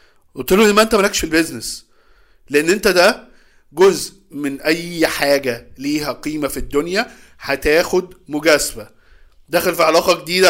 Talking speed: 135 wpm